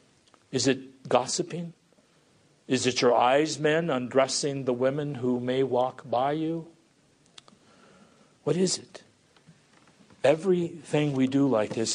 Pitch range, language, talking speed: 110-145 Hz, English, 120 wpm